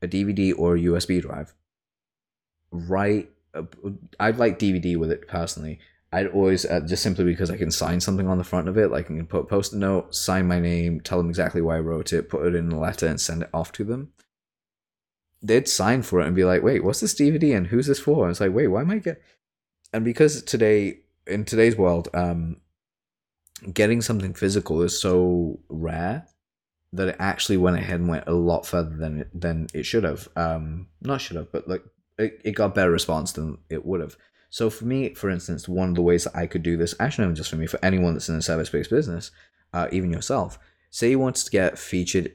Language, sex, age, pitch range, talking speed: English, male, 20-39, 85-100 Hz, 225 wpm